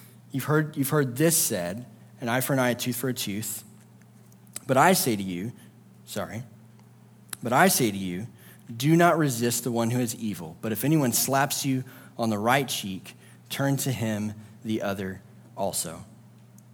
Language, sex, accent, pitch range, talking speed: English, male, American, 115-145 Hz, 180 wpm